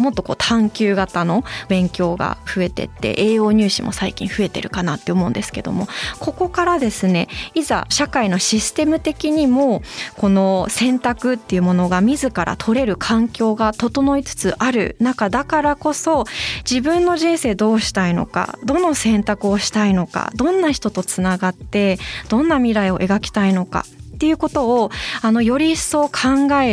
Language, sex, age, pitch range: Japanese, female, 20-39, 195-260 Hz